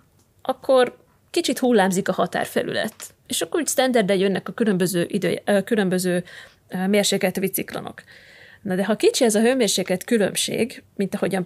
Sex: female